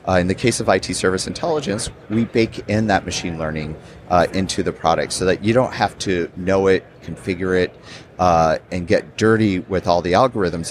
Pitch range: 85-105 Hz